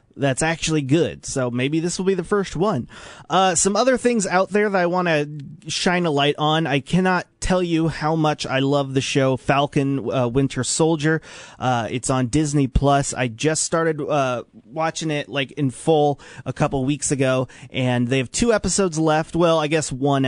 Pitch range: 130-165 Hz